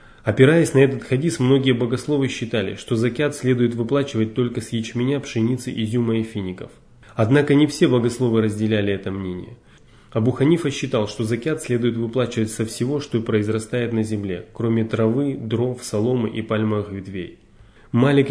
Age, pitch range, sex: 20-39, 110-130 Hz, male